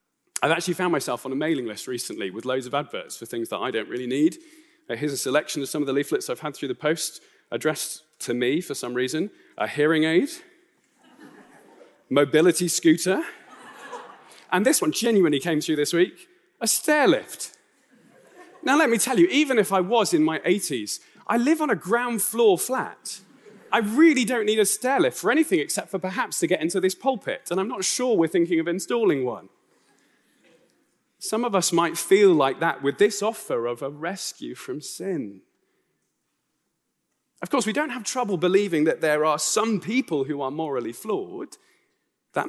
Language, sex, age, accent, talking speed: English, male, 30-49, British, 185 wpm